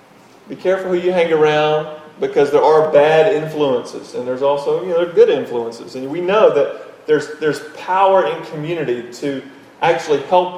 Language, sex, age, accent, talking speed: English, male, 40-59, American, 180 wpm